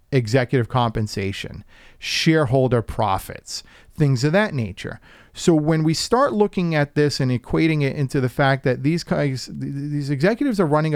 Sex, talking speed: male, 150 wpm